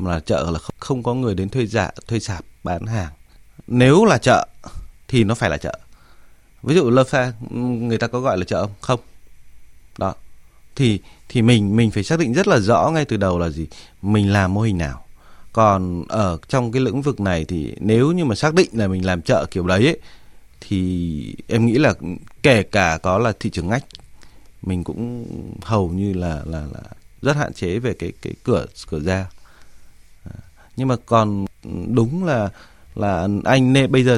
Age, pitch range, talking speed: 20-39, 90-115 Hz, 195 wpm